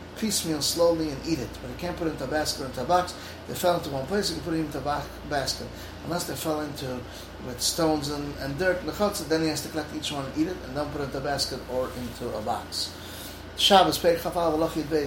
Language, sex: English, male